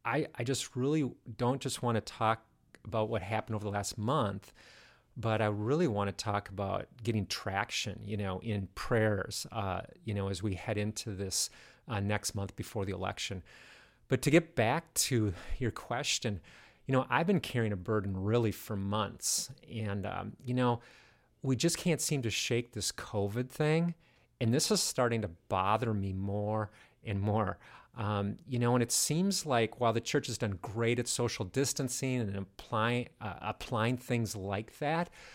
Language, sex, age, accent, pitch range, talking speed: English, male, 40-59, American, 105-125 Hz, 180 wpm